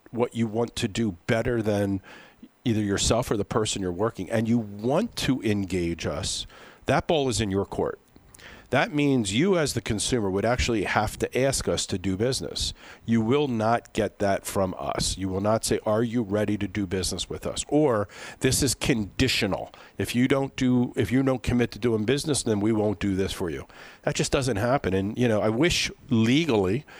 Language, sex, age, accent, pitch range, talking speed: English, male, 50-69, American, 100-125 Hz, 205 wpm